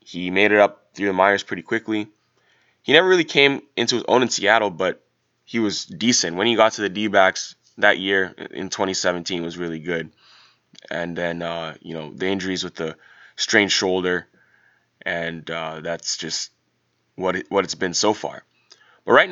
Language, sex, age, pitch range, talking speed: English, male, 20-39, 85-105 Hz, 185 wpm